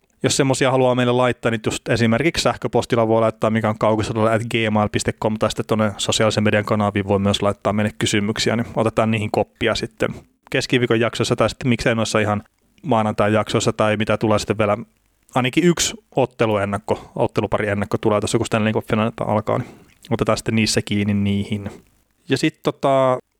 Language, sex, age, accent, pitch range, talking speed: Finnish, male, 30-49, native, 110-125 Hz, 165 wpm